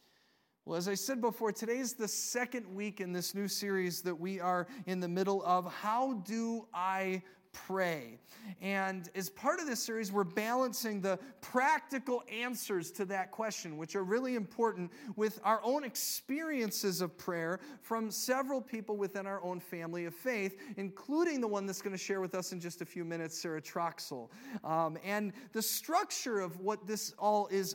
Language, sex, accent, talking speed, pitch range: English, male, American, 180 wpm, 195-255 Hz